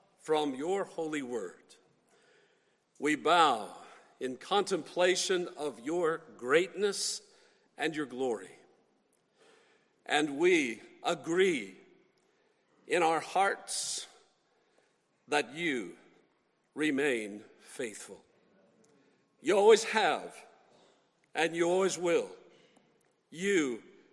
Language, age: English, 50-69